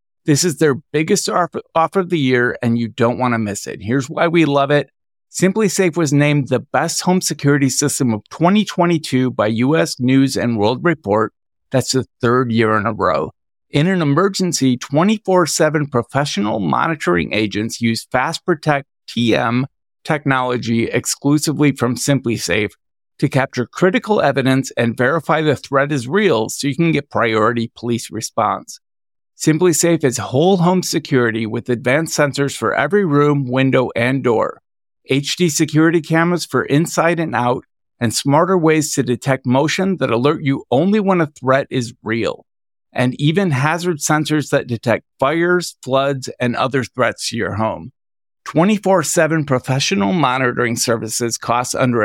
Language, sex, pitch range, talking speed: English, male, 120-160 Hz, 150 wpm